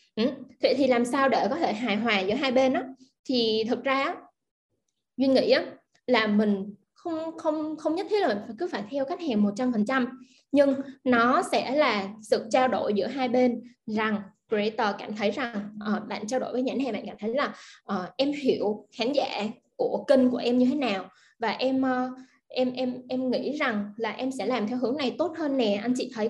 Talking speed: 215 wpm